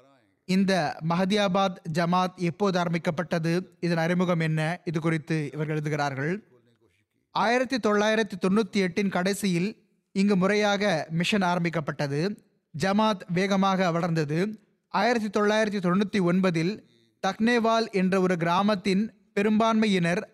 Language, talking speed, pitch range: Tamil, 90 wpm, 165-210 Hz